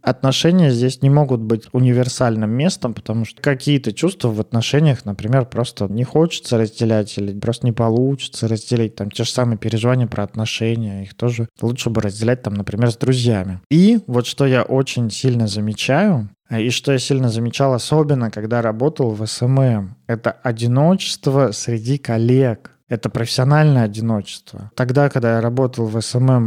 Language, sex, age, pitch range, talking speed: Russian, male, 20-39, 110-130 Hz, 155 wpm